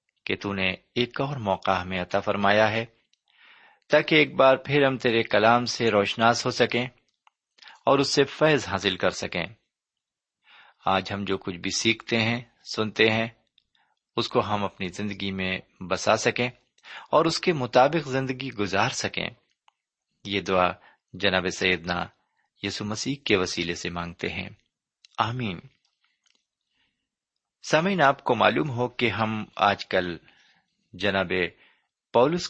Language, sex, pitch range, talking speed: Urdu, male, 95-130 Hz, 135 wpm